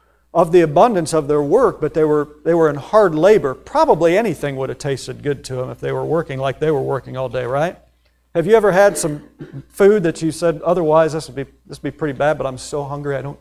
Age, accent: 50-69, American